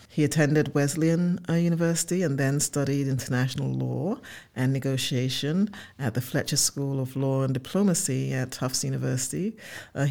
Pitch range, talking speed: 130-150 Hz, 145 wpm